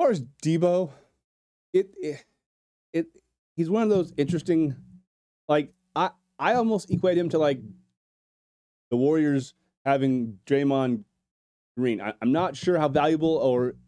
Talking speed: 140 wpm